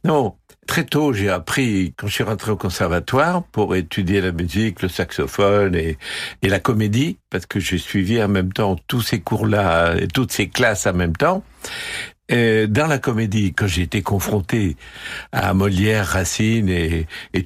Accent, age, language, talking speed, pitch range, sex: French, 60-79, French, 175 wpm, 95-120 Hz, male